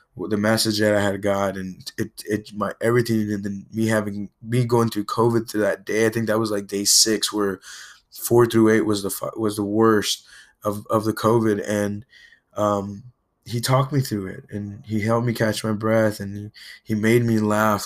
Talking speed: 205 wpm